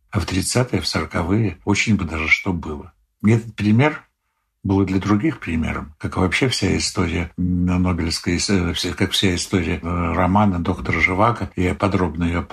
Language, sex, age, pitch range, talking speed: Russian, male, 60-79, 90-105 Hz, 145 wpm